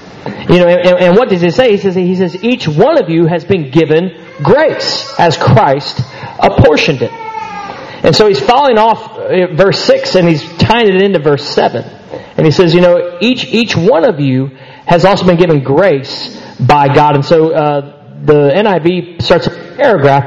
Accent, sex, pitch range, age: American, male, 150-185 Hz, 40-59